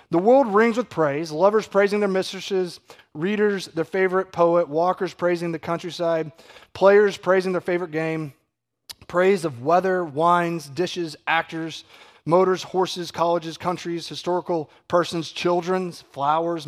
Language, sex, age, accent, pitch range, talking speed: English, male, 30-49, American, 150-185 Hz, 130 wpm